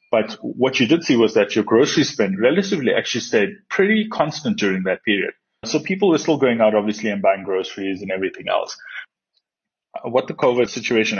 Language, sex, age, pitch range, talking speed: English, male, 30-49, 100-130 Hz, 190 wpm